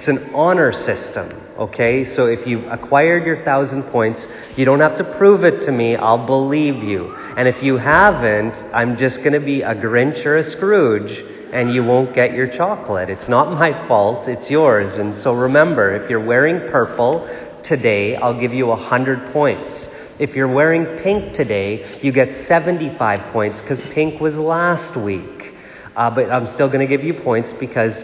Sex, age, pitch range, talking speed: male, 40-59, 125-155 Hz, 185 wpm